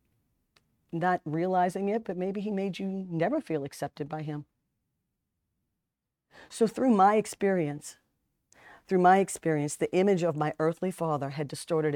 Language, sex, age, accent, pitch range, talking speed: English, female, 40-59, American, 150-180 Hz, 140 wpm